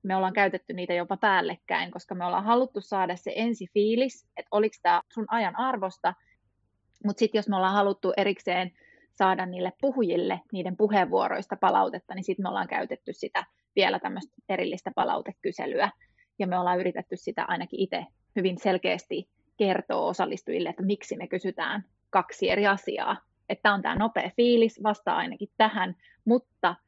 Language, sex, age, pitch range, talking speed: Finnish, female, 20-39, 185-215 Hz, 160 wpm